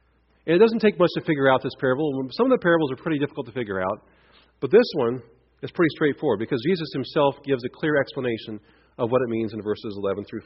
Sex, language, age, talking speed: male, English, 40-59, 235 wpm